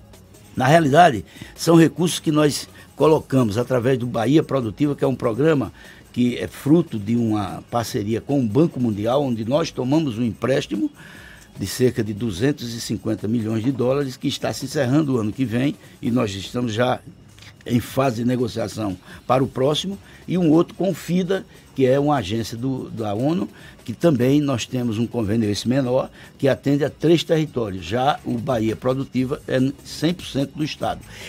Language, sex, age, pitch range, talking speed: Portuguese, male, 60-79, 110-145 Hz, 175 wpm